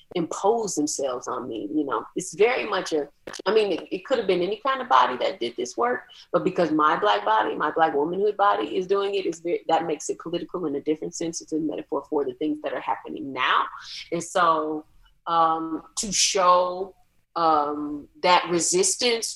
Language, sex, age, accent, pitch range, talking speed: English, female, 30-49, American, 155-210 Hz, 200 wpm